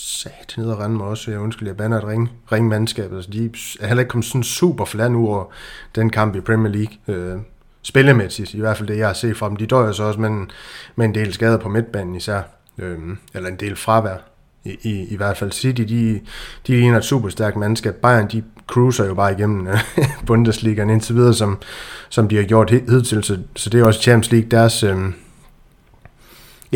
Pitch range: 105-120 Hz